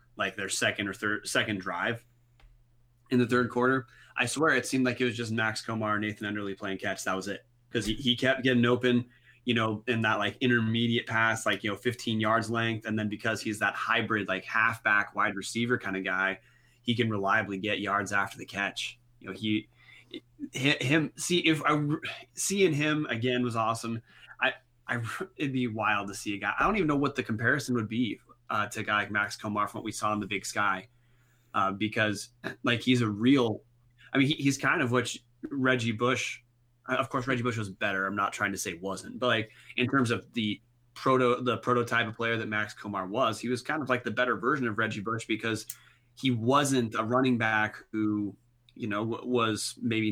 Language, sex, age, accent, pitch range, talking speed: English, male, 20-39, American, 110-125 Hz, 210 wpm